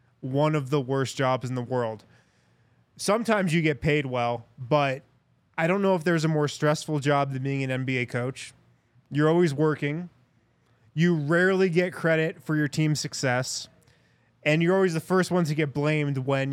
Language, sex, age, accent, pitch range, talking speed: English, male, 20-39, American, 125-160 Hz, 180 wpm